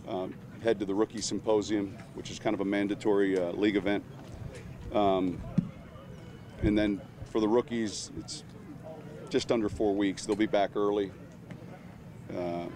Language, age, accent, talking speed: English, 40-59, American, 145 wpm